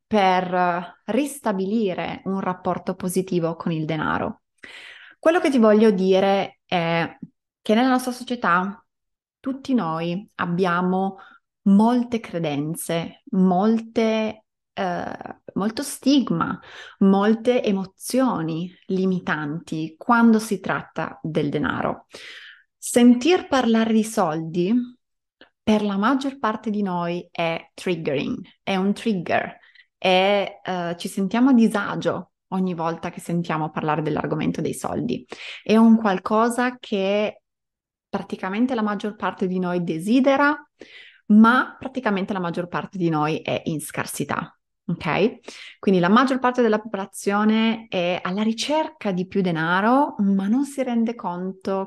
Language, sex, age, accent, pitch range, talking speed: Italian, female, 20-39, native, 180-230 Hz, 115 wpm